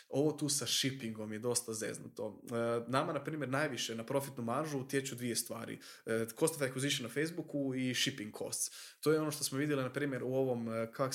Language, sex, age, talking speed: Croatian, male, 20-39, 195 wpm